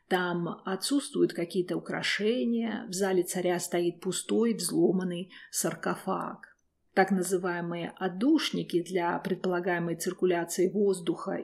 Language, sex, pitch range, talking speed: Russian, female, 180-220 Hz, 95 wpm